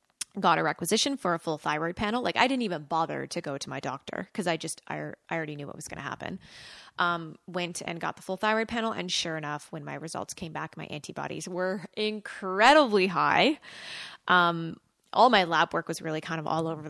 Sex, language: female, English